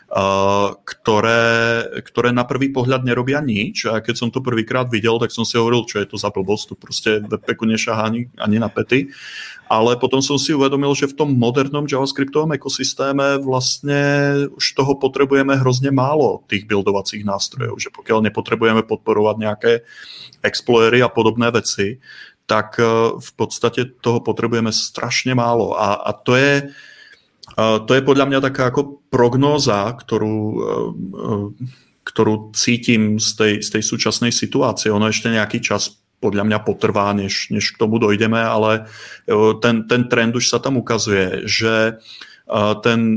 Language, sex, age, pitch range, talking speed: Czech, male, 30-49, 110-130 Hz, 145 wpm